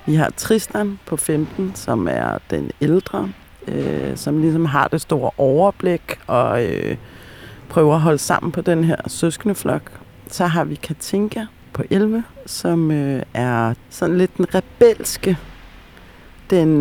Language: Danish